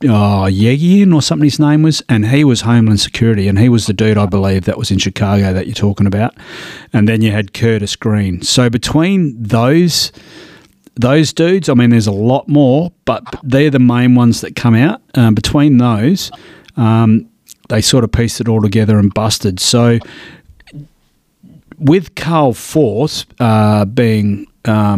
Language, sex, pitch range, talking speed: English, male, 110-145 Hz, 170 wpm